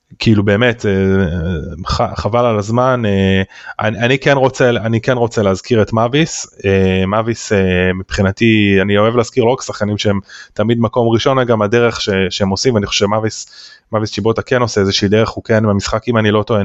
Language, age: Hebrew, 20-39